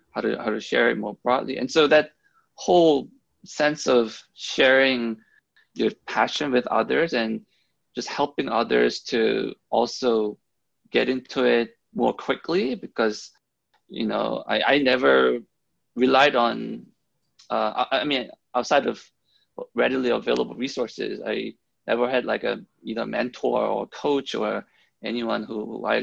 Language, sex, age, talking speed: English, male, 20-39, 140 wpm